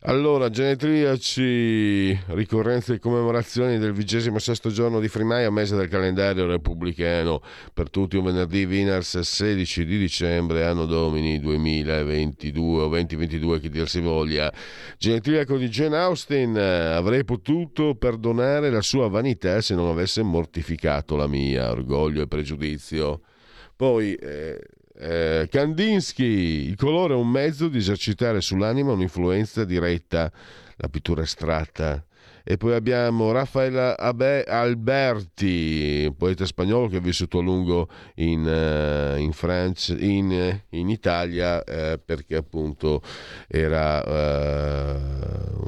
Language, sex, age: Italian, male, 50-69